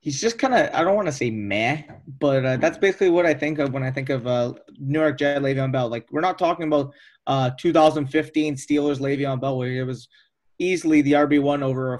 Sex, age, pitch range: male, 20-39, 135-155 Hz